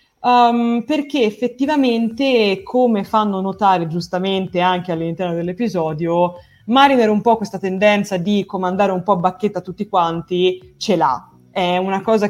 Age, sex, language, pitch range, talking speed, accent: 20-39, female, Italian, 180-235 Hz, 135 wpm, native